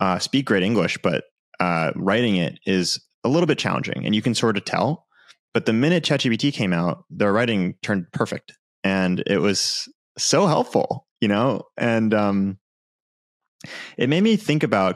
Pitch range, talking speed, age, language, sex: 95-120 Hz, 175 wpm, 30-49, English, male